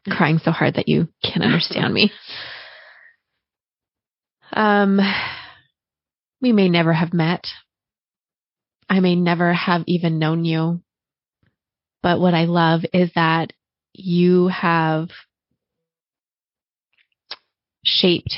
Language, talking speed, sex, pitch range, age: English, 100 wpm, female, 160-180 Hz, 20-39